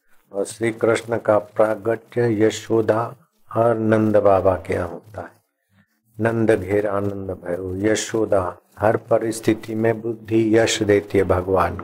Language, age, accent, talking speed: Hindi, 50-69, native, 125 wpm